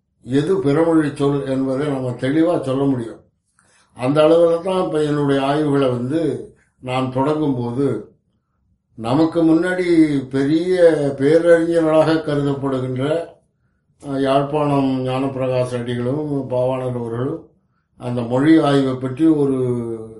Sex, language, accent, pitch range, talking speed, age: male, Tamil, native, 130-160 Hz, 95 wpm, 60-79